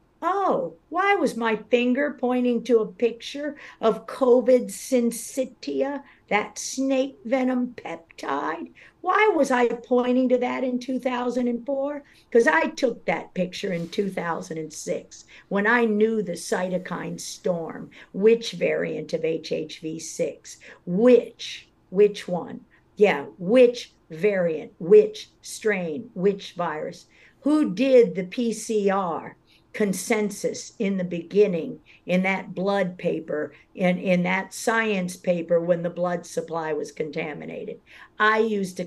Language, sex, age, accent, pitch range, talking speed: English, female, 50-69, American, 185-260 Hz, 120 wpm